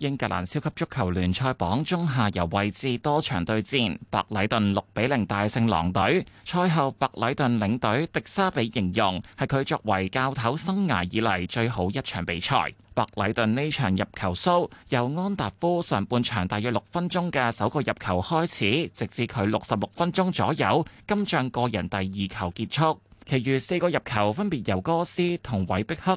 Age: 20-39